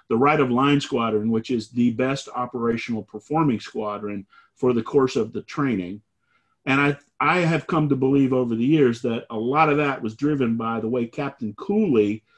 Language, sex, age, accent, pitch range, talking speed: English, male, 40-59, American, 115-140 Hz, 195 wpm